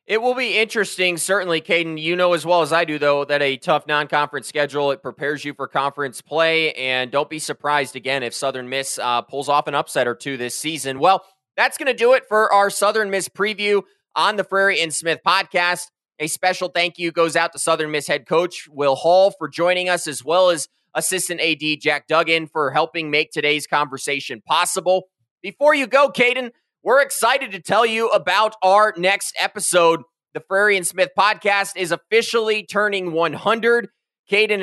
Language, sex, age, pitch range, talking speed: English, male, 20-39, 160-200 Hz, 190 wpm